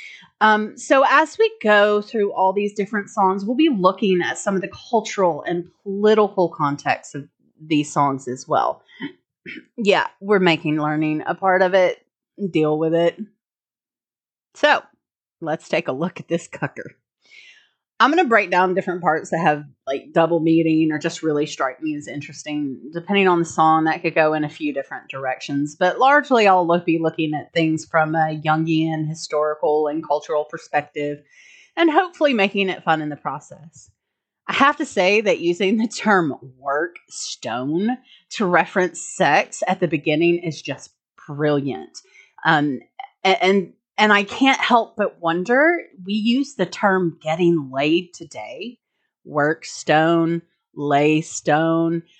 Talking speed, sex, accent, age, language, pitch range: 160 wpm, female, American, 30-49, English, 155-220 Hz